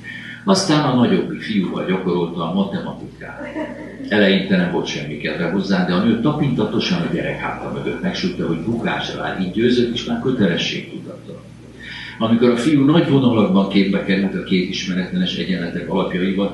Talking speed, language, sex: 150 wpm, Hungarian, male